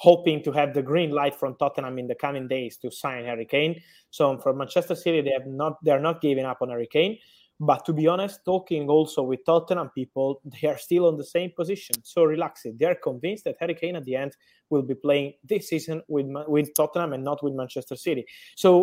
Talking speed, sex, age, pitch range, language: 230 wpm, male, 20-39, 135-165 Hz, English